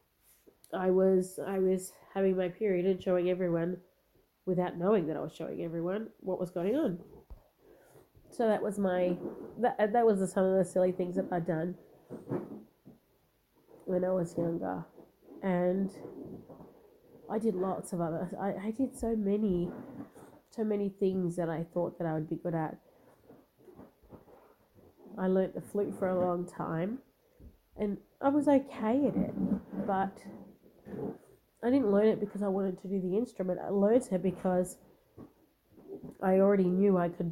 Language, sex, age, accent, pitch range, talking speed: English, female, 30-49, Australian, 175-200 Hz, 160 wpm